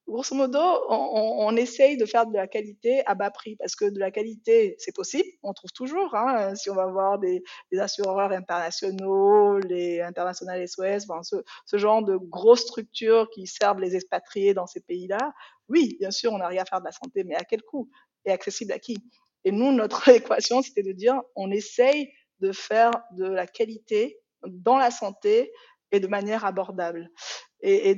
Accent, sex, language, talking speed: French, female, French, 195 wpm